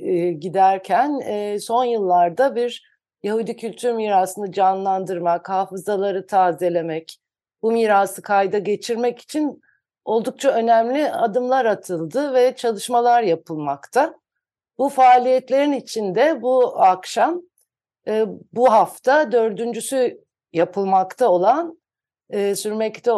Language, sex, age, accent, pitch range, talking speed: Turkish, female, 60-79, native, 190-245 Hz, 85 wpm